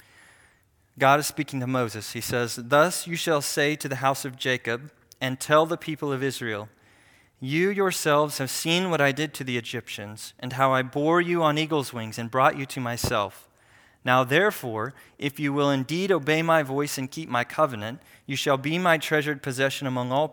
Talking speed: 195 wpm